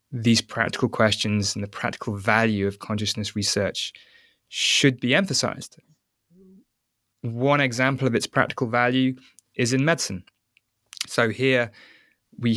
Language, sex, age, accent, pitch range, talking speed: English, male, 20-39, British, 105-125 Hz, 120 wpm